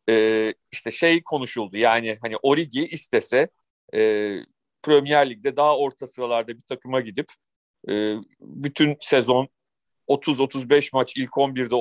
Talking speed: 120 wpm